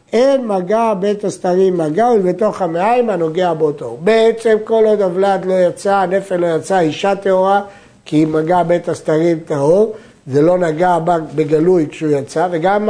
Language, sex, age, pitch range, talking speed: Hebrew, male, 60-79, 160-215 Hz, 155 wpm